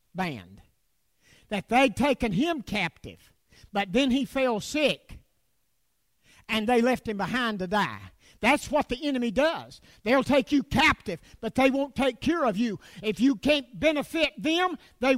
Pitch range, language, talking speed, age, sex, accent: 180-270 Hz, English, 160 wpm, 50-69, male, American